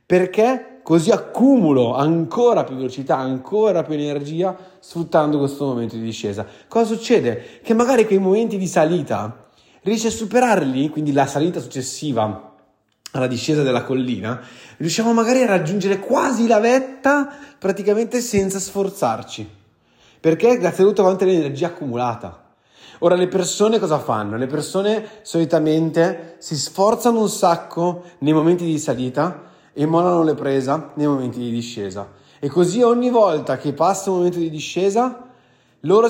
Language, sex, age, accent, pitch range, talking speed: Italian, male, 30-49, native, 130-195 Hz, 140 wpm